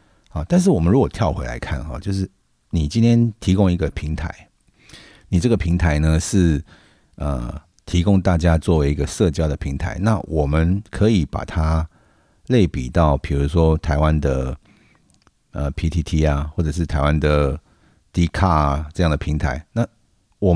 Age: 50-69